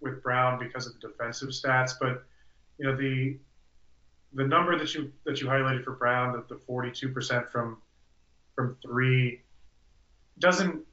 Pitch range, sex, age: 115-135 Hz, male, 30-49